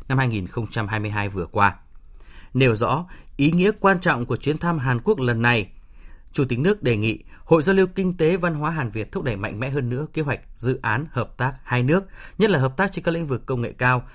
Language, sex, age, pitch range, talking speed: Vietnamese, male, 20-39, 120-170 Hz, 240 wpm